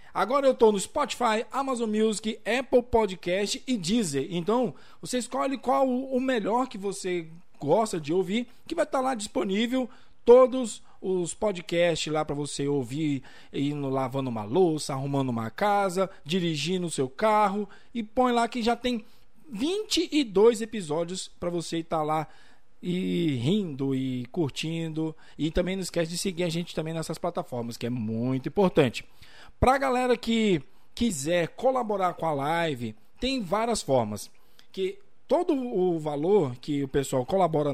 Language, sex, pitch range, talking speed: Portuguese, male, 145-225 Hz, 155 wpm